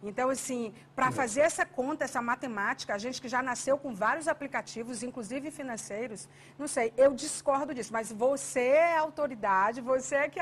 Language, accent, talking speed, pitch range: Portuguese, Brazilian, 175 wpm, 235-295 Hz